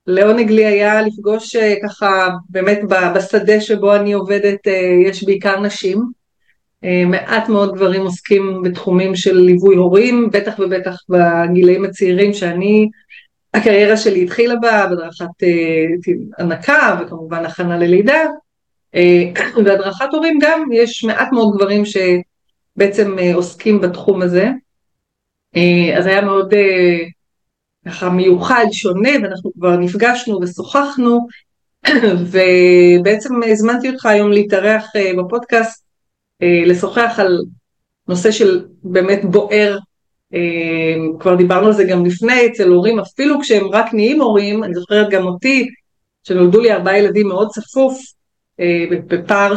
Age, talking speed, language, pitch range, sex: 30-49, 110 wpm, Hebrew, 180-220 Hz, female